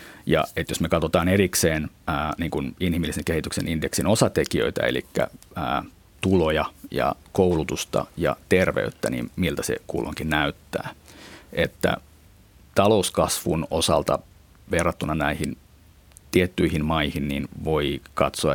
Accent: native